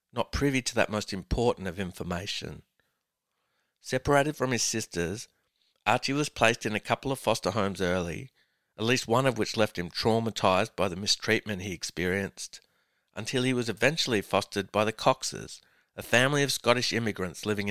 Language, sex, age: English, male, 60-79